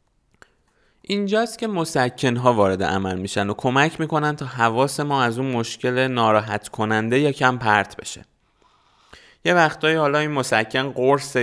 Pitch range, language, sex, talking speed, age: 110-135 Hz, Persian, male, 140 wpm, 20-39